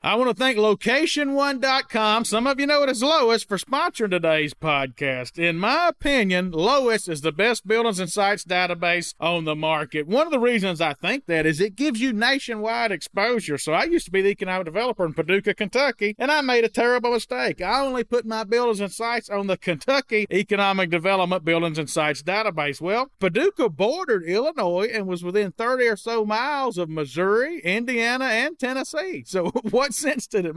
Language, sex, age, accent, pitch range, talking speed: English, male, 40-59, American, 170-230 Hz, 190 wpm